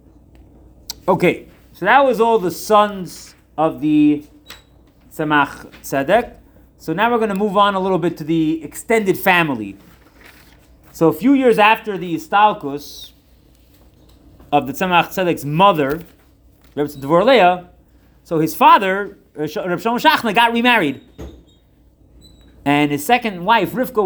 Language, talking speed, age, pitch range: English, 125 wpm, 30-49, 155-220 Hz